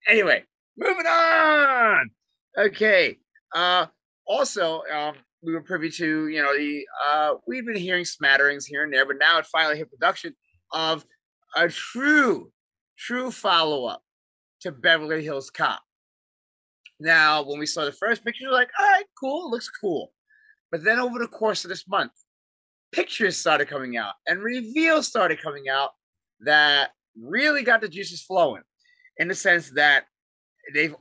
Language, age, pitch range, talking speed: English, 30-49, 155-250 Hz, 155 wpm